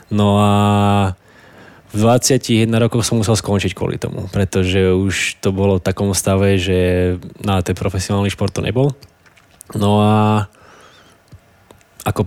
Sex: male